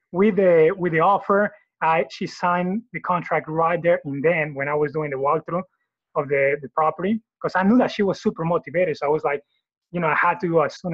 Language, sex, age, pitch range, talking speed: English, male, 30-49, 155-200 Hz, 240 wpm